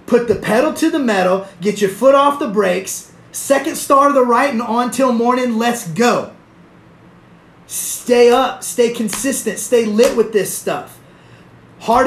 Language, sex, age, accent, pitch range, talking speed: English, male, 30-49, American, 195-250 Hz, 165 wpm